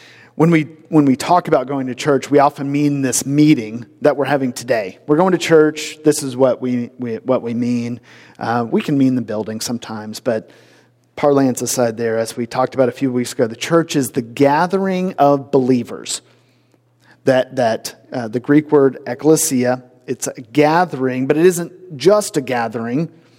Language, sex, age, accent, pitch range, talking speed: English, male, 40-59, American, 130-165 Hz, 185 wpm